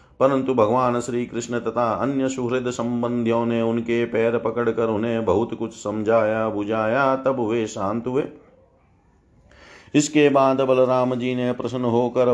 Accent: native